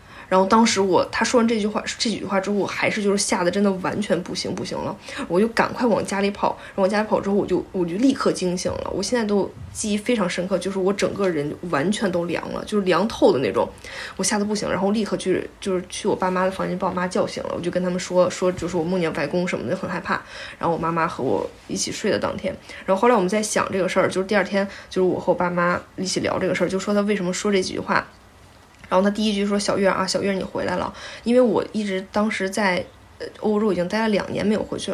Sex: female